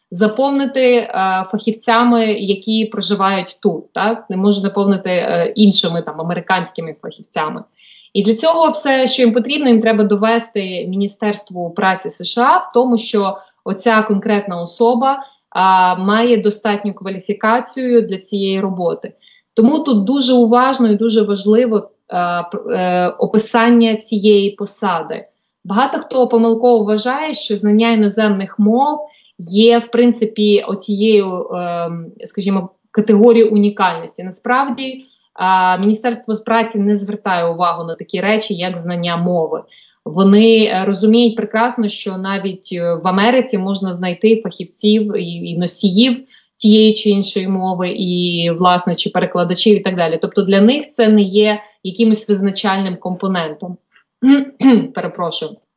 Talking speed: 120 wpm